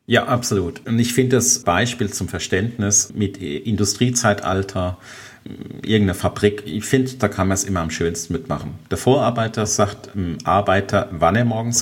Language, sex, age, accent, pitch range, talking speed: German, male, 40-59, German, 90-120 Hz, 150 wpm